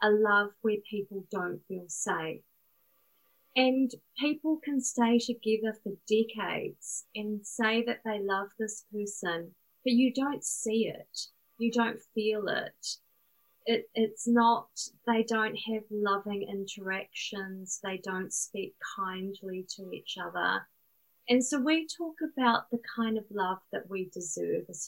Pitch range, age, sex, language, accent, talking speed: 195-240 Hz, 30-49, female, English, Australian, 140 wpm